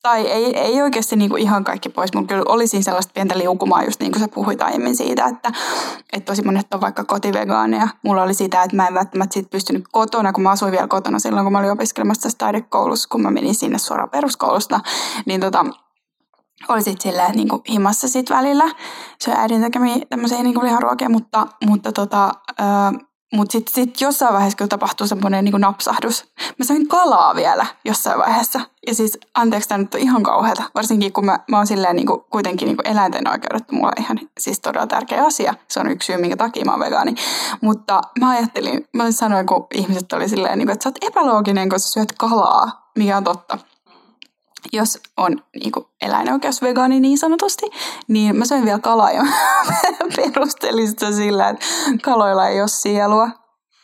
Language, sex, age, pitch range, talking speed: Finnish, female, 10-29, 200-255 Hz, 180 wpm